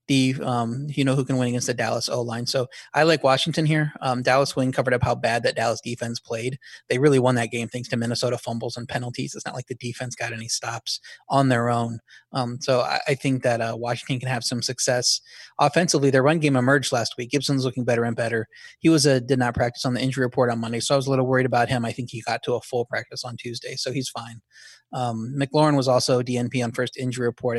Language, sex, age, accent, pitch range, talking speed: English, male, 30-49, American, 120-130 Hz, 250 wpm